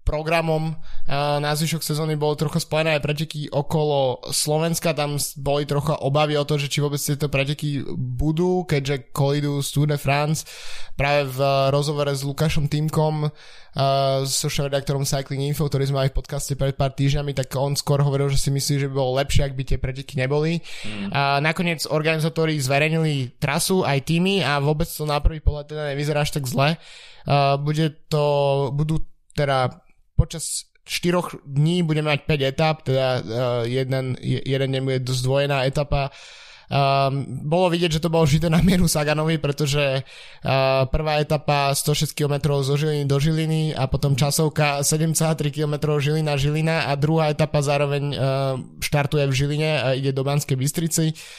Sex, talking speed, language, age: male, 155 wpm, Slovak, 20-39